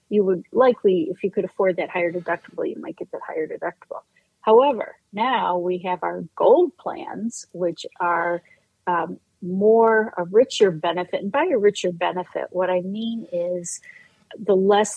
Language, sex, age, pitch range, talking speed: English, female, 40-59, 175-215 Hz, 165 wpm